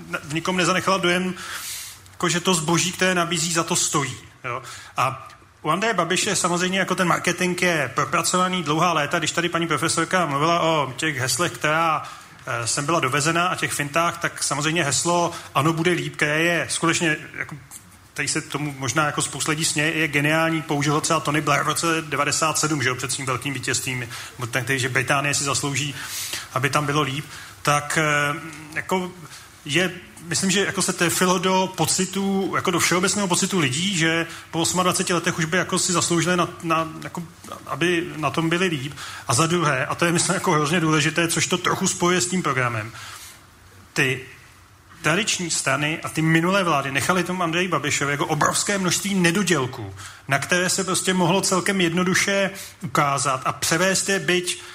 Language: Czech